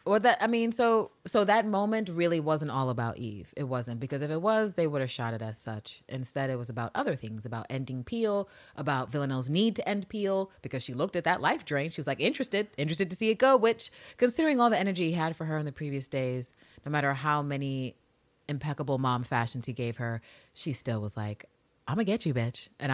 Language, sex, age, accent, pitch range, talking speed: English, female, 30-49, American, 125-180 Hz, 240 wpm